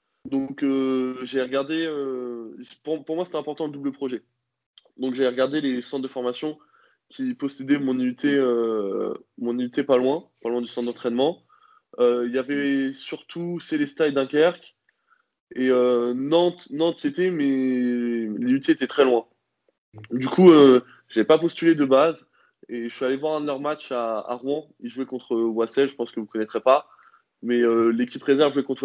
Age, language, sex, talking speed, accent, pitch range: 20-39, French, male, 185 wpm, French, 115-145 Hz